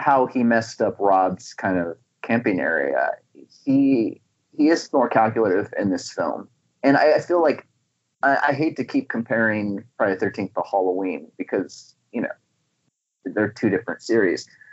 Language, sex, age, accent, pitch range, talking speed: English, male, 30-49, American, 115-170 Hz, 165 wpm